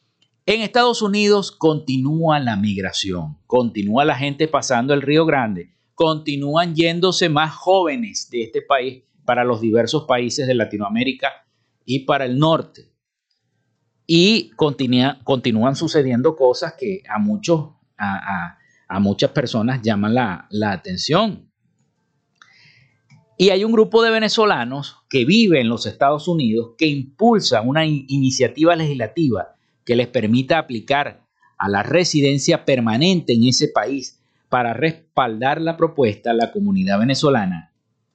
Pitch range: 125-170 Hz